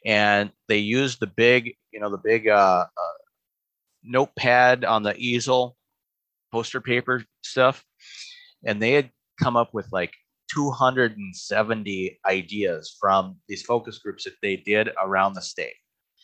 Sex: male